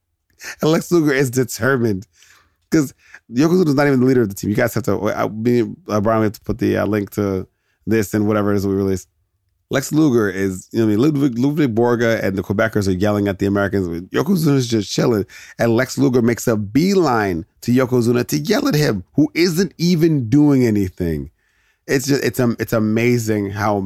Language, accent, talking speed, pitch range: English, American, 200 wpm, 95-120 Hz